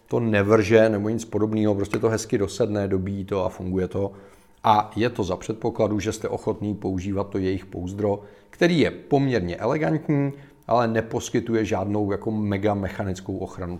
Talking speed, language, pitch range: 160 wpm, Czech, 105-140 Hz